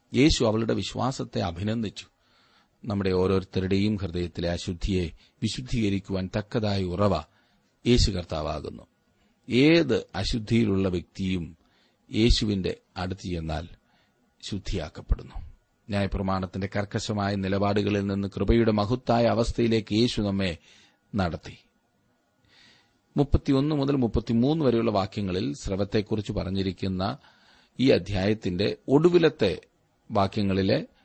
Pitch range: 95-115 Hz